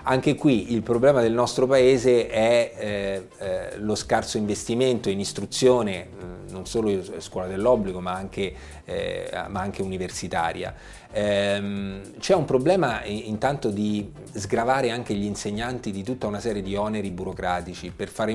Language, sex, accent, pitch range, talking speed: Italian, male, native, 95-120 Hz, 135 wpm